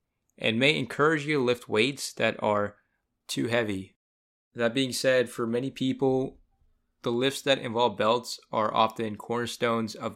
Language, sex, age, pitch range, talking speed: English, male, 20-39, 105-125 Hz, 155 wpm